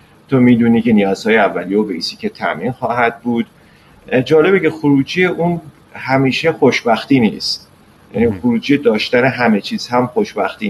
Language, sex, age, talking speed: Persian, male, 30-49, 140 wpm